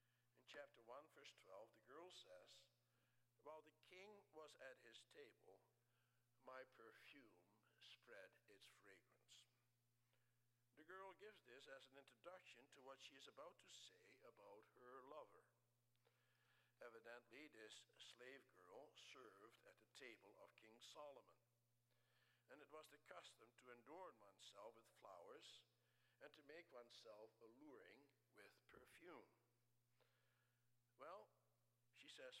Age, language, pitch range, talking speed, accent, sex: 60-79, English, 120-145 Hz, 120 wpm, American, male